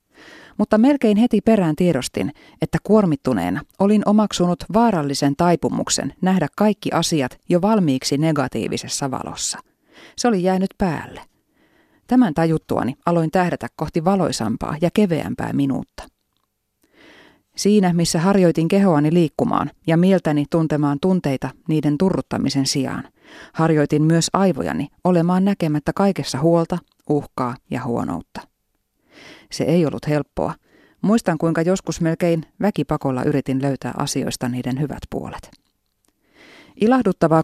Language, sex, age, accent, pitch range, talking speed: Finnish, female, 30-49, native, 150-195 Hz, 110 wpm